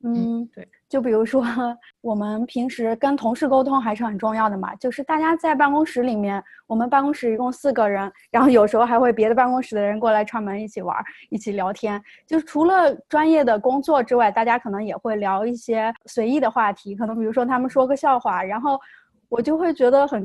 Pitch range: 220-265 Hz